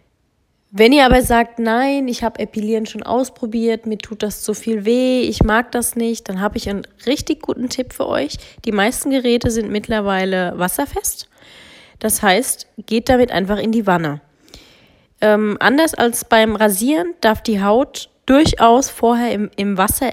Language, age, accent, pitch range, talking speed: German, 20-39, German, 205-240 Hz, 165 wpm